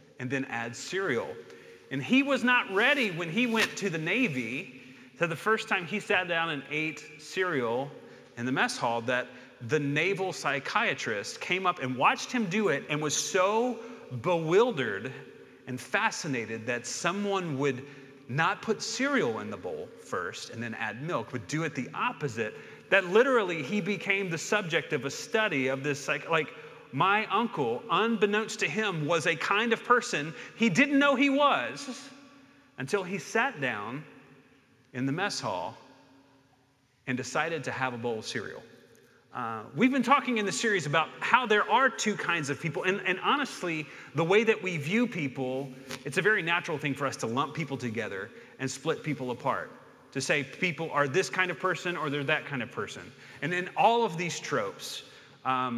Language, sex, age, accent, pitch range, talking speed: English, male, 40-59, American, 135-210 Hz, 180 wpm